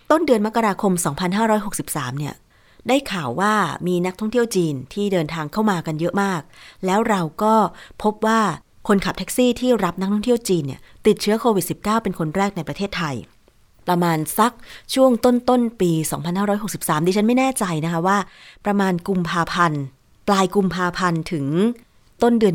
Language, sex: Thai, female